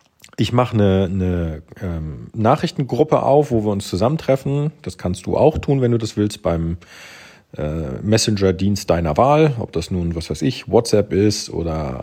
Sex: male